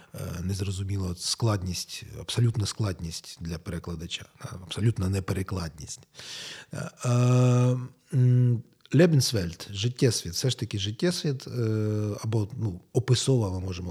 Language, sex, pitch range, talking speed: Ukrainian, male, 100-135 Hz, 80 wpm